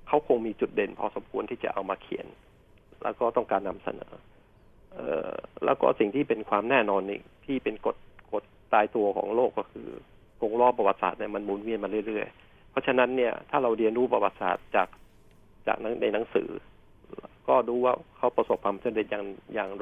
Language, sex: Thai, male